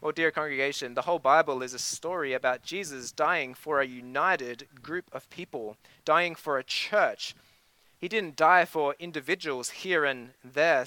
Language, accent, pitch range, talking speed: English, Australian, 145-180 Hz, 165 wpm